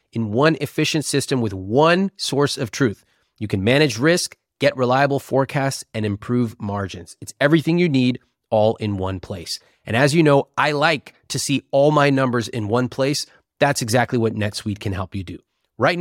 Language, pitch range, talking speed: English, 110-150 Hz, 185 wpm